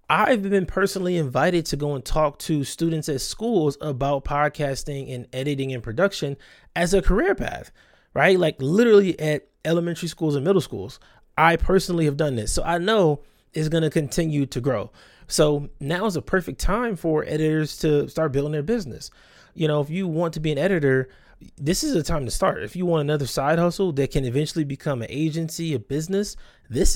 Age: 20-39